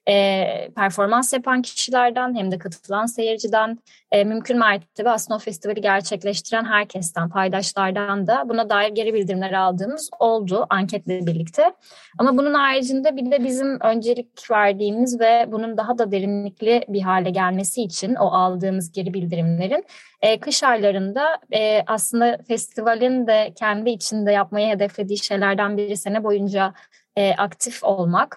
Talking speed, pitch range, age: 135 wpm, 195-240 Hz, 10-29